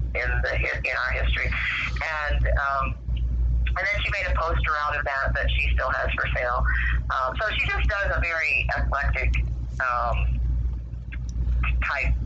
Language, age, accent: English, 40-59, American